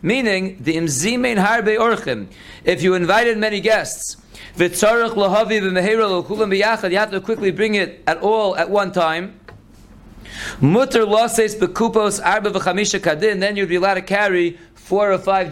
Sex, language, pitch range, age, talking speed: male, English, 180-215 Hz, 40-59, 115 wpm